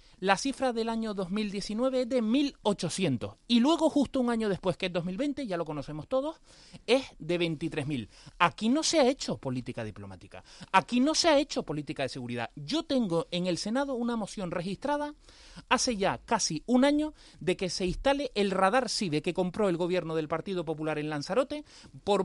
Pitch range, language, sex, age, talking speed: 165-250 Hz, Spanish, male, 30-49, 185 wpm